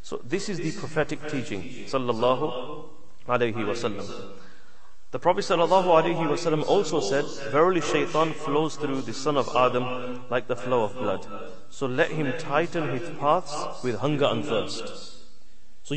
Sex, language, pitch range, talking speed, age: male, English, 125-150 Hz, 130 wpm, 30-49